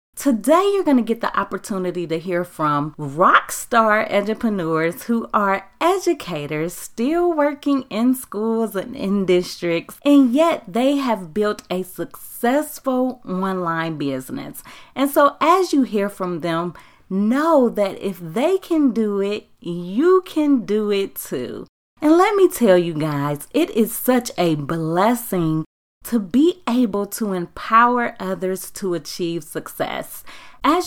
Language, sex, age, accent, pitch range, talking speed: English, female, 30-49, American, 175-270 Hz, 140 wpm